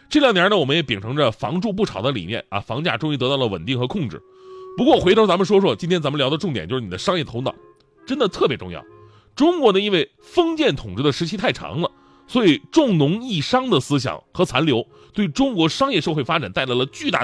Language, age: Chinese, 30-49